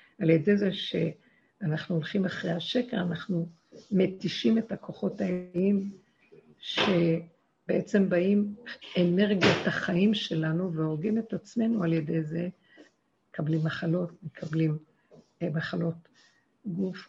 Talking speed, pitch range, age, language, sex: 100 wpm, 165-205 Hz, 50-69, Hebrew, female